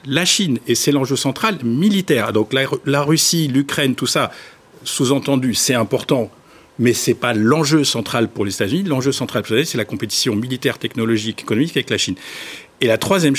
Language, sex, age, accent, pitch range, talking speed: French, male, 50-69, French, 120-160 Hz, 190 wpm